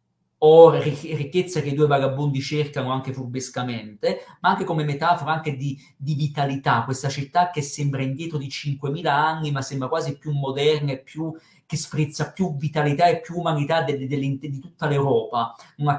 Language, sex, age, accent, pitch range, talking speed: Italian, male, 40-59, native, 140-165 Hz, 185 wpm